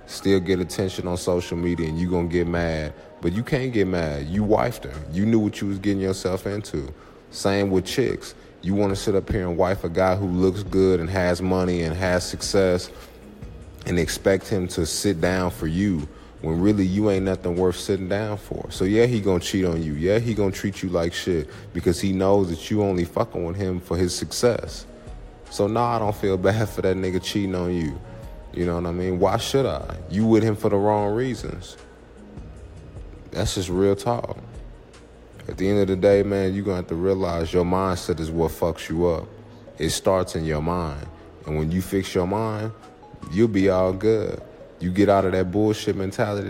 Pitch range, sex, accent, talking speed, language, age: 85-100 Hz, male, American, 215 wpm, English, 30-49